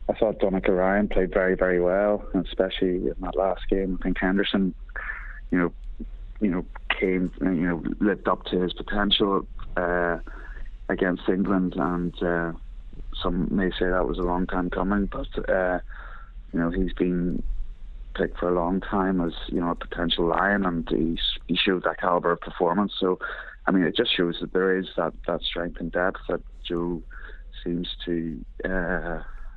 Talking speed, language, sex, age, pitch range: 175 wpm, English, male, 30-49, 85-95 Hz